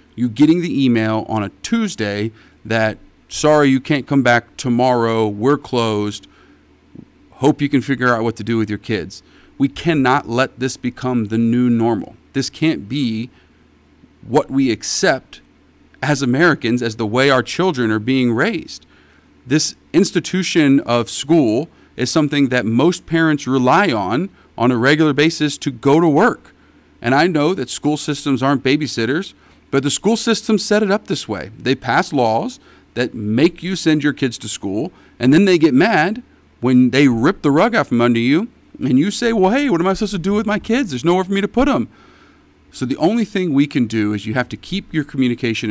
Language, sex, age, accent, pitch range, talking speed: English, male, 40-59, American, 110-155 Hz, 195 wpm